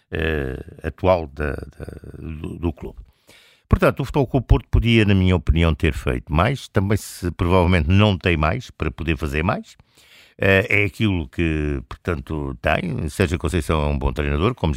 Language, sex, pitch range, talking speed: Portuguese, male, 75-90 Hz, 170 wpm